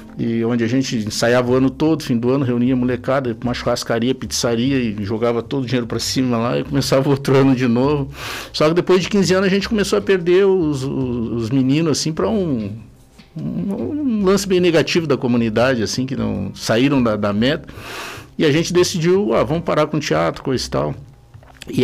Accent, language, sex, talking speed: Brazilian, Portuguese, male, 210 wpm